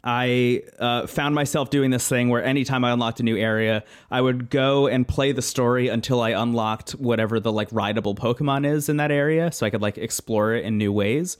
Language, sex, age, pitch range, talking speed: English, male, 30-49, 110-140 Hz, 220 wpm